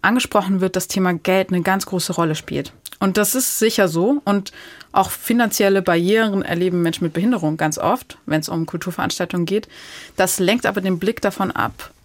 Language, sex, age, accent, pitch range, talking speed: German, female, 20-39, German, 180-205 Hz, 185 wpm